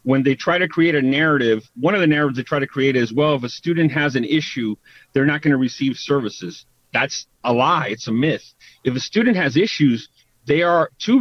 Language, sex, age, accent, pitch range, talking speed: English, male, 40-59, American, 125-155 Hz, 230 wpm